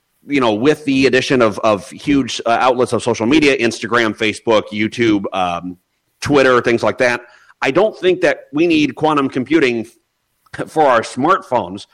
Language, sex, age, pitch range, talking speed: English, male, 30-49, 110-150 Hz, 160 wpm